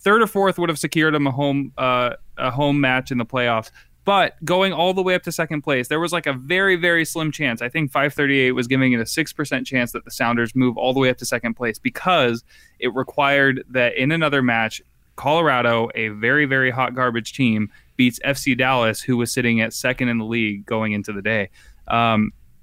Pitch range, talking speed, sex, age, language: 115-145 Hz, 215 wpm, male, 20-39, English